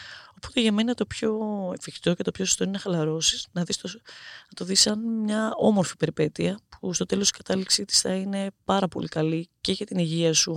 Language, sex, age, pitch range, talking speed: Greek, female, 20-39, 160-200 Hz, 210 wpm